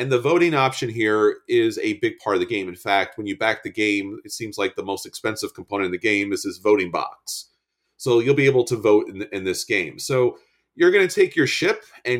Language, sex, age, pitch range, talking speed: English, male, 30-49, 105-165 Hz, 250 wpm